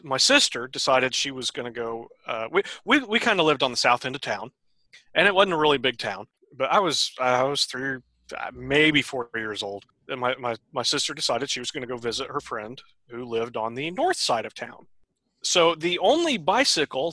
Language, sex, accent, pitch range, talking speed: English, male, American, 120-155 Hz, 225 wpm